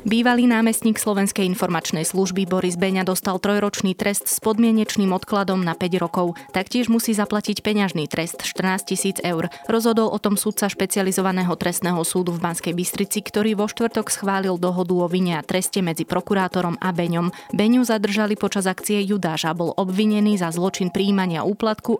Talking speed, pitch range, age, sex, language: 160 wpm, 175-205 Hz, 20-39, female, Slovak